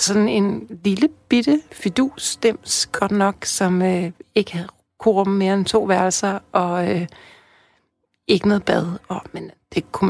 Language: Danish